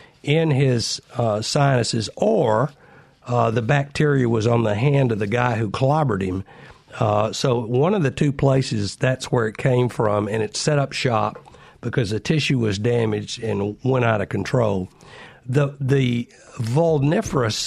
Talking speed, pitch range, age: 165 wpm, 115-140 Hz, 50-69